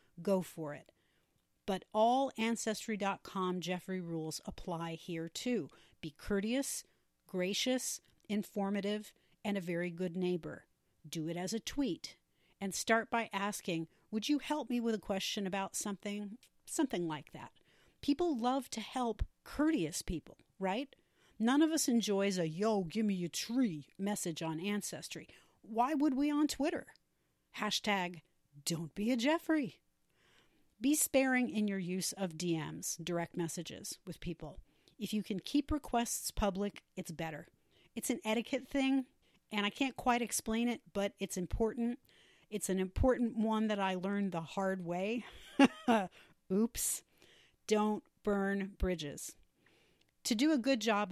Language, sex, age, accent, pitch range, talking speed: English, female, 40-59, American, 180-235 Hz, 145 wpm